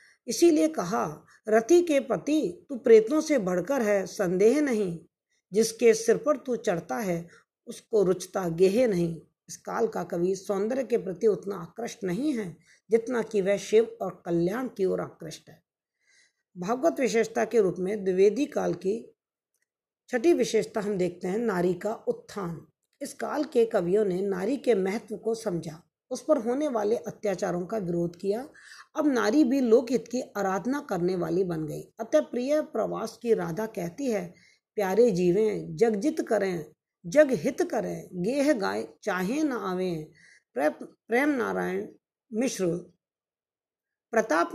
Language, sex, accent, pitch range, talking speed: Hindi, female, native, 185-250 Hz, 145 wpm